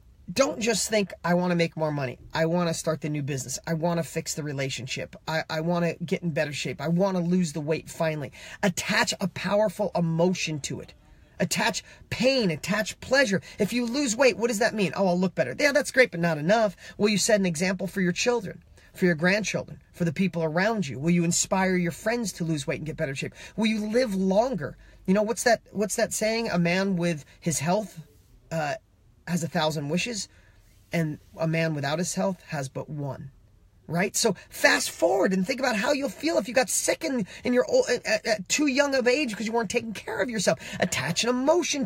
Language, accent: English, American